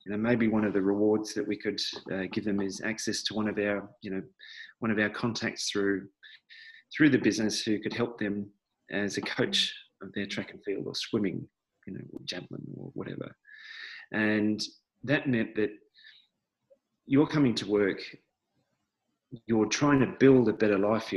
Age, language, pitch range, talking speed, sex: 30-49, English, 100-120 Hz, 185 wpm, male